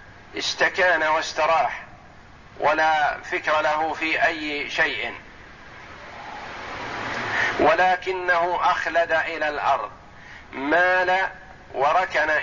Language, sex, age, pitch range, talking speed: Arabic, male, 50-69, 155-180 Hz, 70 wpm